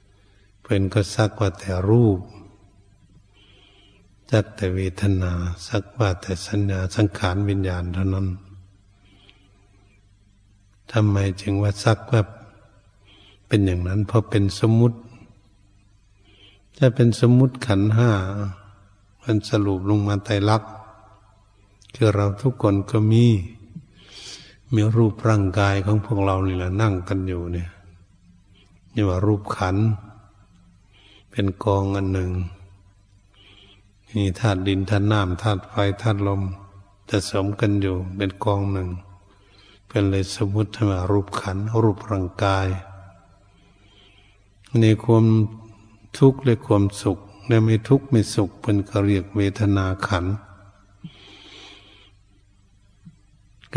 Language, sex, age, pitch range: Thai, male, 70-89, 100-105 Hz